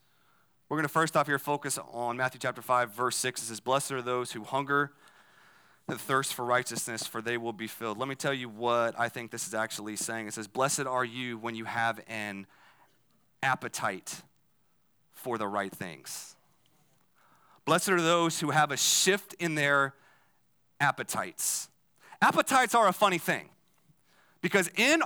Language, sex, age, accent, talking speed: English, male, 30-49, American, 170 wpm